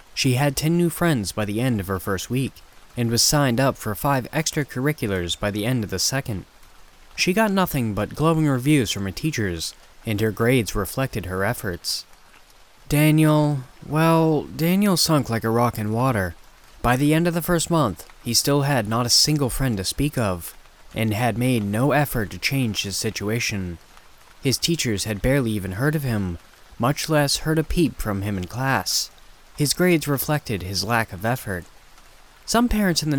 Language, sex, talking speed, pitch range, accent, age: English, male, 185 wpm, 100-145 Hz, American, 20-39